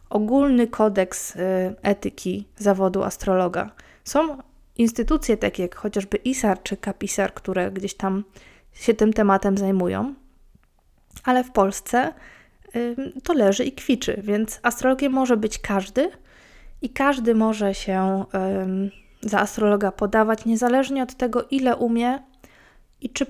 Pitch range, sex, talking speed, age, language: 195-245 Hz, female, 120 wpm, 20-39, Polish